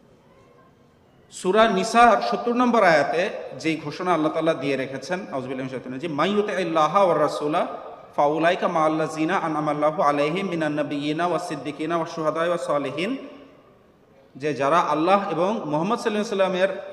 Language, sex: Bengali, male